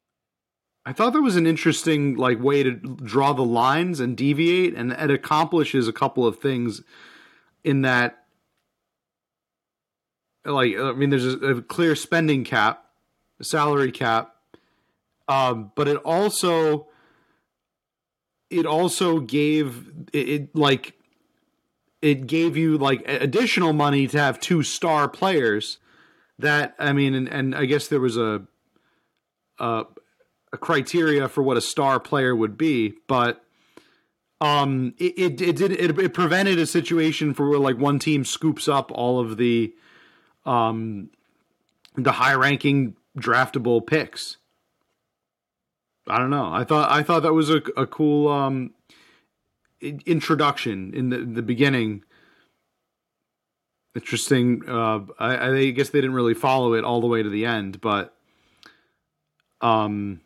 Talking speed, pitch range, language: 140 wpm, 120-155 Hz, English